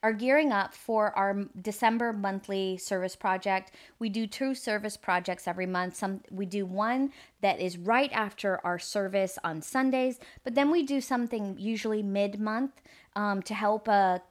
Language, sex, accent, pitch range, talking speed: English, female, American, 185-225 Hz, 165 wpm